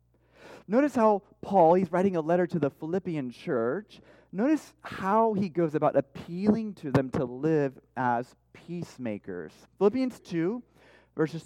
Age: 30-49